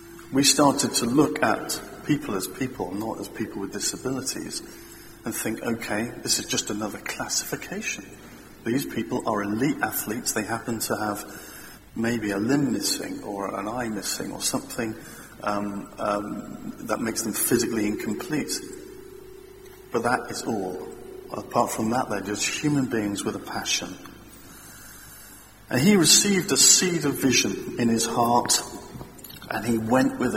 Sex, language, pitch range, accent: male, English, 110-150 Hz, British